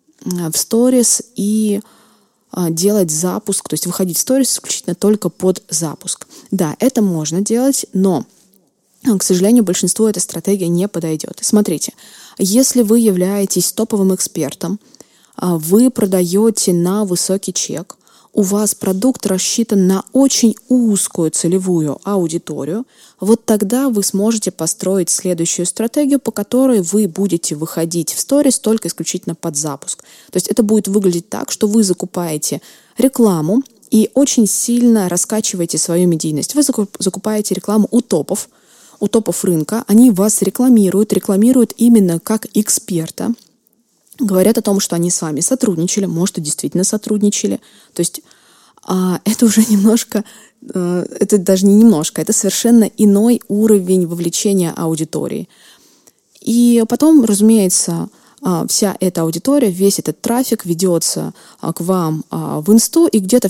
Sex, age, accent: female, 20-39, native